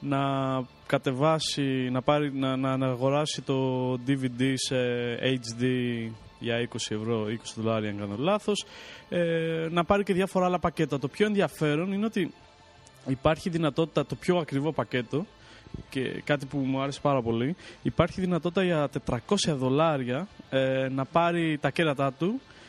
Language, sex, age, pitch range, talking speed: English, male, 20-39, 130-160 Hz, 135 wpm